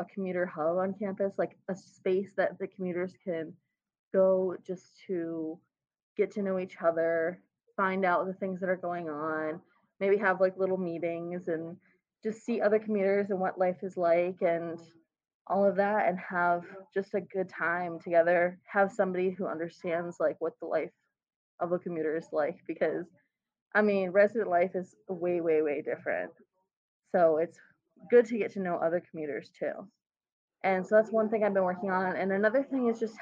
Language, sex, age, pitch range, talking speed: English, female, 20-39, 175-210 Hz, 180 wpm